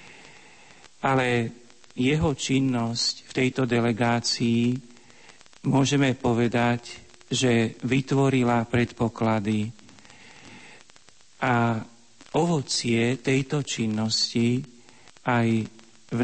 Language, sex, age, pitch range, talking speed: Slovak, male, 50-69, 115-125 Hz, 65 wpm